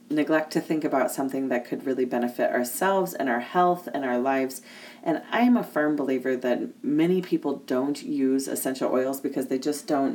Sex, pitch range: female, 130-160 Hz